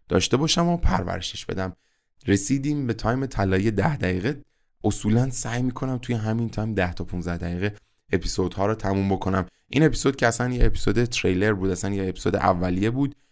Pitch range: 95-120 Hz